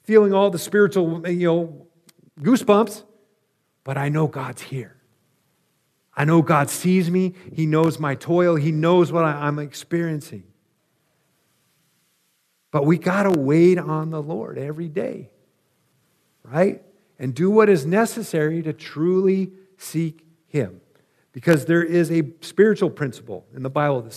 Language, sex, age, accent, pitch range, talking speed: English, male, 50-69, American, 140-185 Hz, 140 wpm